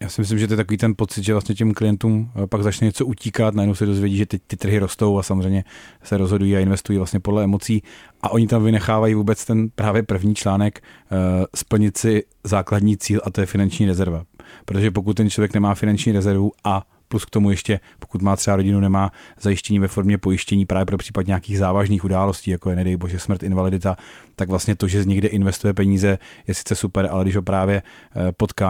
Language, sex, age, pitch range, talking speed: Czech, male, 30-49, 95-105 Hz, 215 wpm